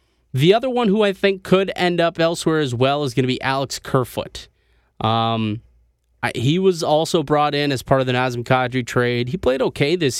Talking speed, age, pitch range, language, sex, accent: 205 wpm, 20-39, 125-160 Hz, English, male, American